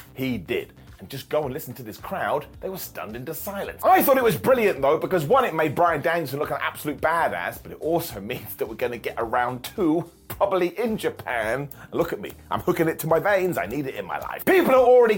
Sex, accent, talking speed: male, British, 250 wpm